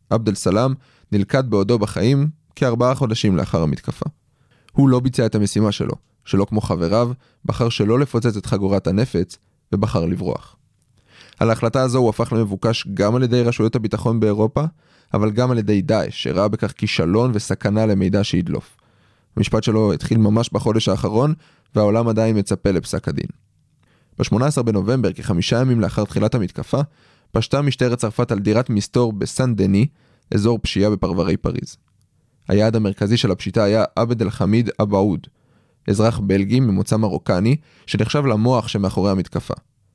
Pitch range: 100-125 Hz